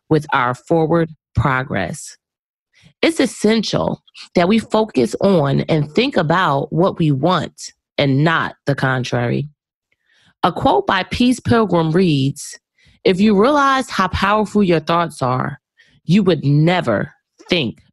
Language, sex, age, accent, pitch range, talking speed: English, female, 30-49, American, 145-195 Hz, 125 wpm